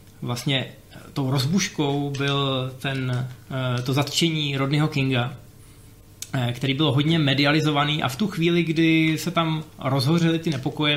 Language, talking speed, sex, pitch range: Czech, 125 wpm, male, 125-155 Hz